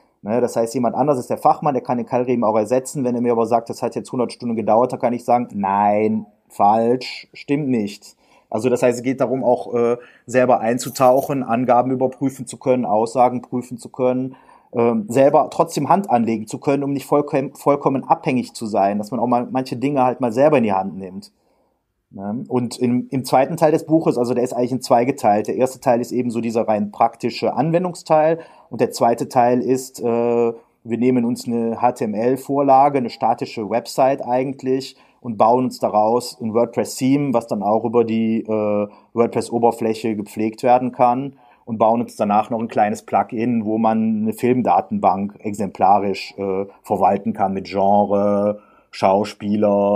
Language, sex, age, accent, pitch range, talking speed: German, male, 30-49, German, 110-130 Hz, 180 wpm